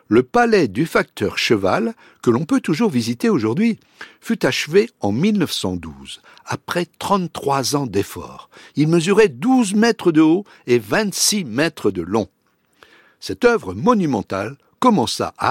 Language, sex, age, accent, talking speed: French, male, 60-79, French, 135 wpm